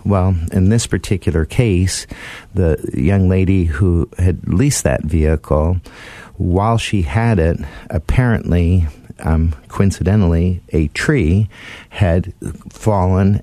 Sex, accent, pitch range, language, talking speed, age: male, American, 85-100 Hz, English, 105 wpm, 50-69